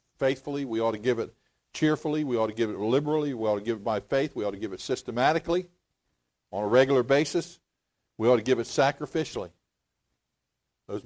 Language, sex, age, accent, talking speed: English, male, 50-69, American, 200 wpm